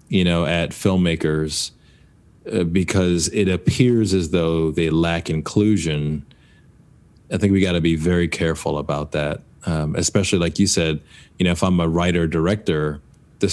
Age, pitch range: 30-49, 80-100 Hz